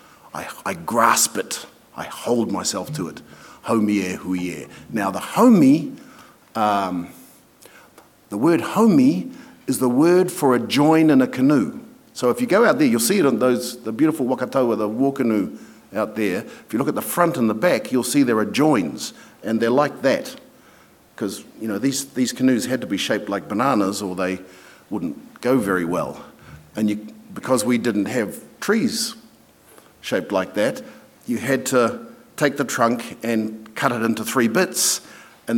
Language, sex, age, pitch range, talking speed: English, male, 50-69, 115-195 Hz, 175 wpm